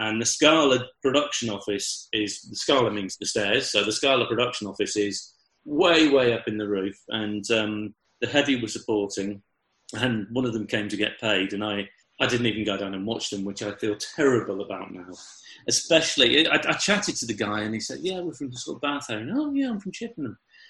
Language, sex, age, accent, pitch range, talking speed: English, male, 40-59, British, 110-170 Hz, 215 wpm